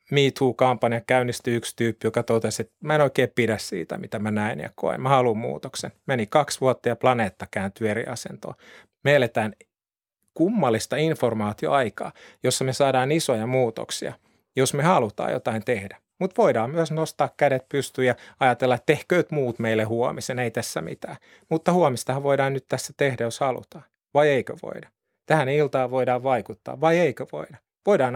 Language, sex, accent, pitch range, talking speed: Finnish, male, native, 115-145 Hz, 165 wpm